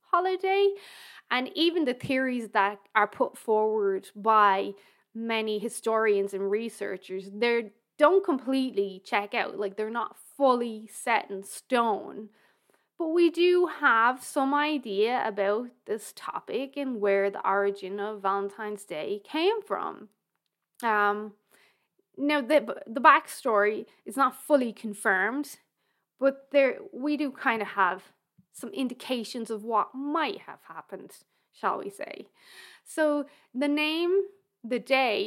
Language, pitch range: English, 205-285 Hz